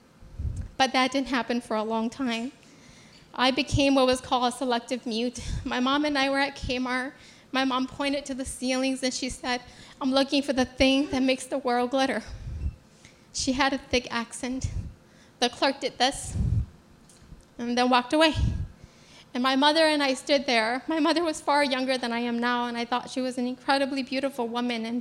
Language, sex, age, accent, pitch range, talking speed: English, female, 10-29, American, 245-270 Hz, 195 wpm